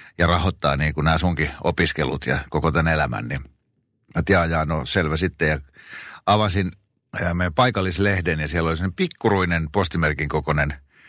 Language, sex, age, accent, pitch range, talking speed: Finnish, male, 60-79, native, 75-95 Hz, 155 wpm